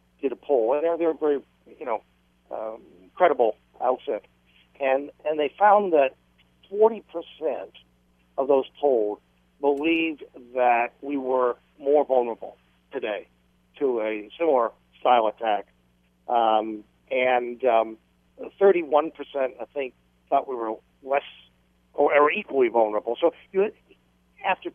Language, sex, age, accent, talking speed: English, male, 60-79, American, 125 wpm